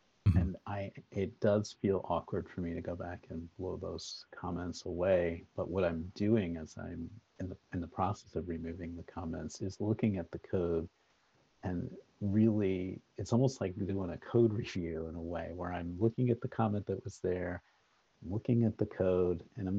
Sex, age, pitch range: male, 50-69, 90-105 Hz